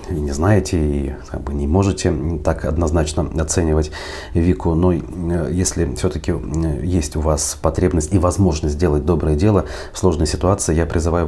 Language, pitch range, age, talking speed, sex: Russian, 75-90 Hz, 30-49, 155 wpm, male